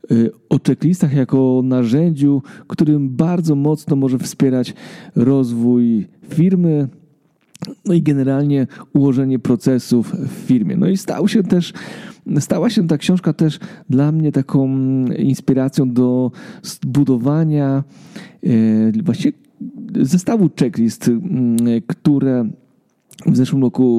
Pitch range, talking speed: 125-180 Hz, 110 wpm